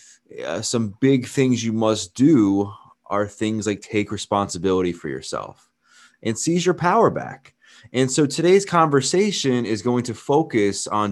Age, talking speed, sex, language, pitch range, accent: 20-39, 150 wpm, male, English, 100-135 Hz, American